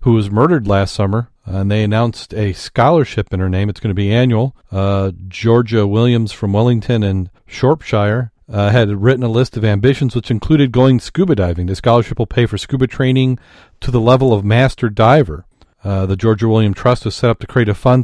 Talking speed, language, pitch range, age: 205 wpm, English, 100-120 Hz, 40-59